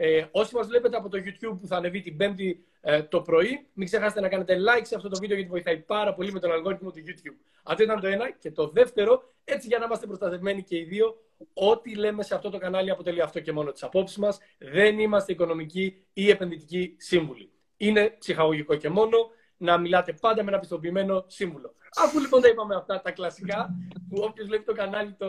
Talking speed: 210 wpm